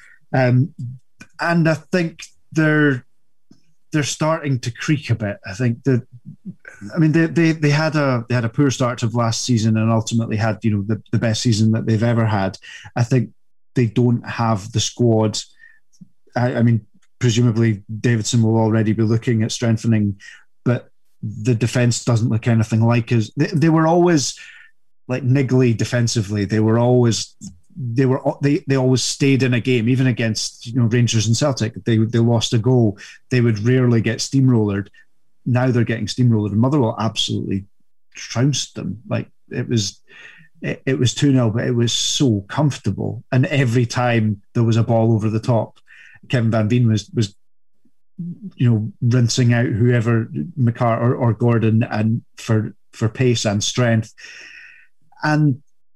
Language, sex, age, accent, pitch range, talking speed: English, male, 30-49, British, 110-130 Hz, 170 wpm